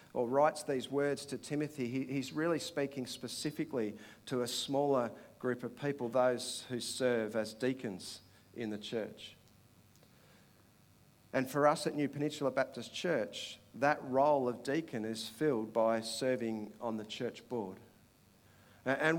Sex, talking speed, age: male, 140 wpm, 50-69